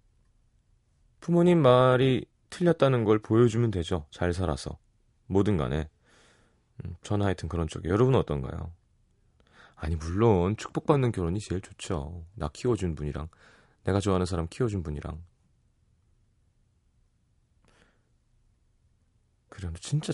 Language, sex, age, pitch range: Korean, male, 30-49, 85-130 Hz